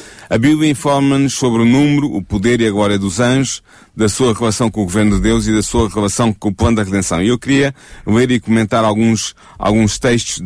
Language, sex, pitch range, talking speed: Portuguese, male, 105-120 Hz, 225 wpm